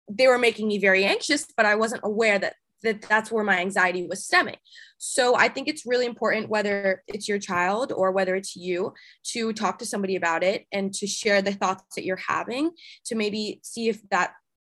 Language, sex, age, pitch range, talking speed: English, female, 20-39, 185-225 Hz, 205 wpm